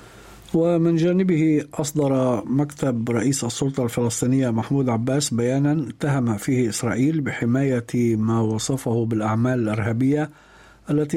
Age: 50-69